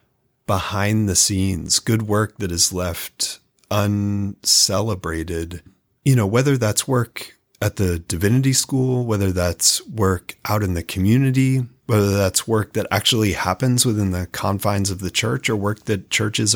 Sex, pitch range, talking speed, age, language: male, 90-110 Hz, 150 wpm, 30-49, English